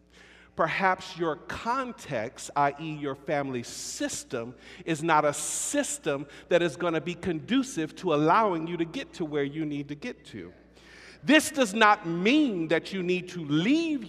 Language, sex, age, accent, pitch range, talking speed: English, male, 50-69, American, 160-255 Hz, 160 wpm